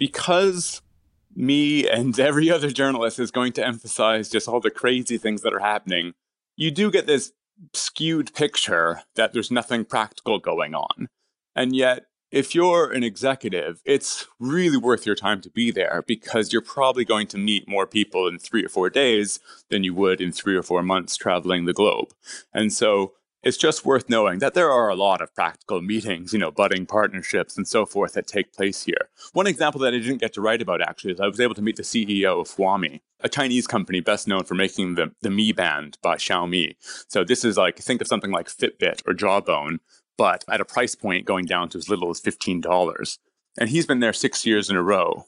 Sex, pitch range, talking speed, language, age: male, 95-130 Hz, 210 wpm, English, 30-49